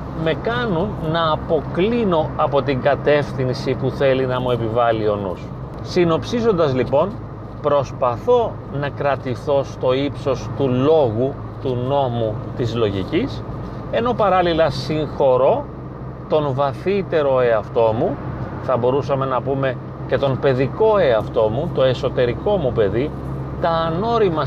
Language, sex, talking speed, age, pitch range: Greek, male, 120 wpm, 40-59, 125-155 Hz